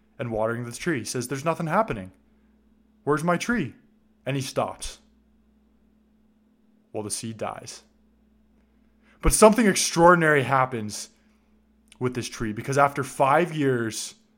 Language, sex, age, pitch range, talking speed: English, male, 20-39, 110-175 Hz, 125 wpm